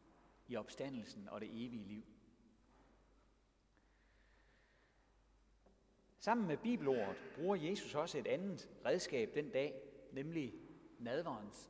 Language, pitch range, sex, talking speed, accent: Danish, 110-185 Hz, male, 95 wpm, native